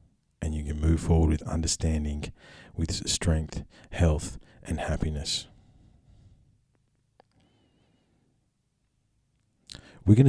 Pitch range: 75-90 Hz